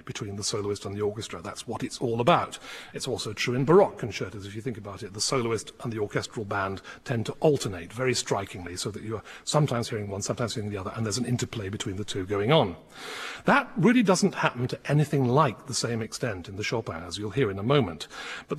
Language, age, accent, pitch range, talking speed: English, 40-59, British, 105-145 Hz, 230 wpm